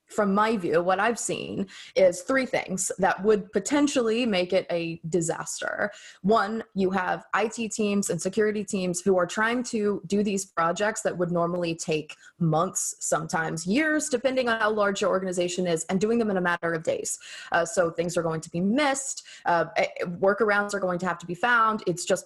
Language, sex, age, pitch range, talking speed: English, female, 20-39, 175-230 Hz, 190 wpm